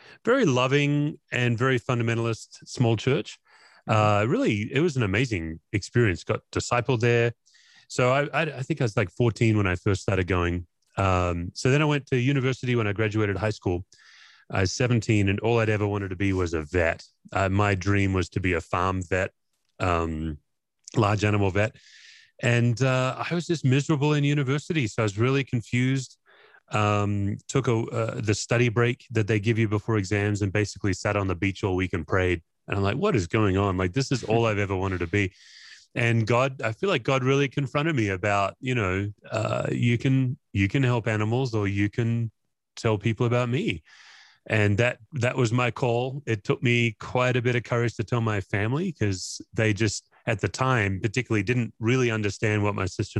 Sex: male